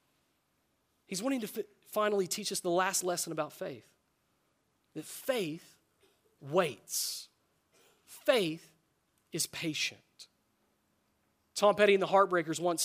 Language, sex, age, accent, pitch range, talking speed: English, male, 30-49, American, 170-225 Hz, 110 wpm